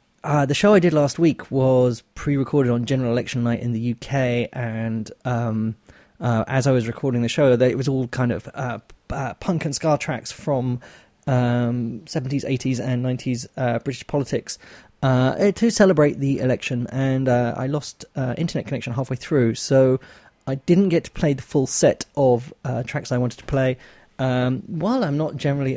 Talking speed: 185 wpm